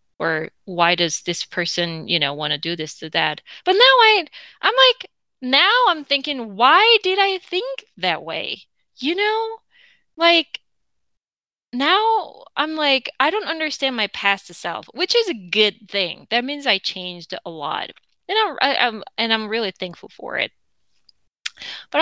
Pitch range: 180-280 Hz